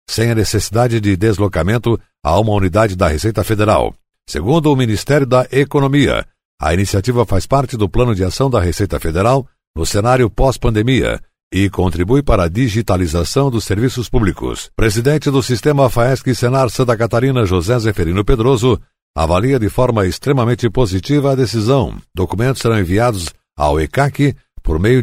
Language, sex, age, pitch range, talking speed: Portuguese, male, 60-79, 100-130 Hz, 150 wpm